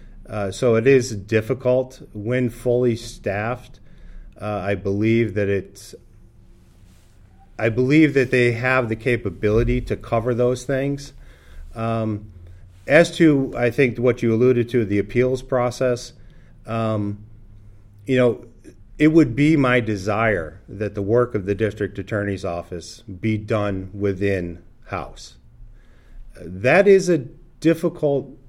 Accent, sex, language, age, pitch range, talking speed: American, male, English, 40-59, 100-125 Hz, 125 wpm